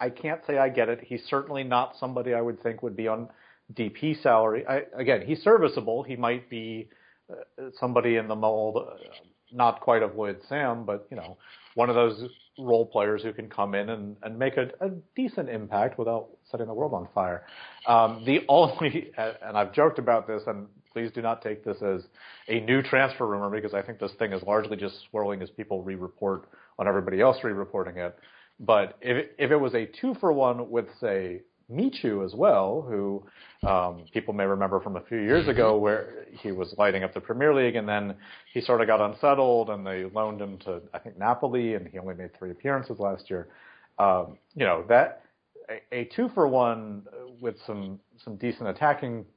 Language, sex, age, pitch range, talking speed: English, male, 40-59, 105-130 Hz, 200 wpm